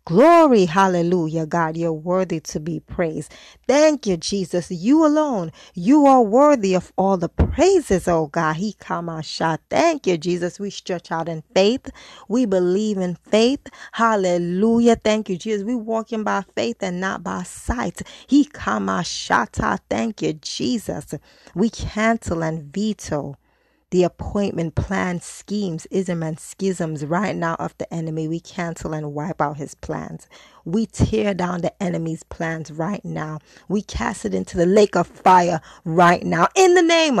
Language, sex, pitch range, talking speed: English, female, 165-220 Hz, 165 wpm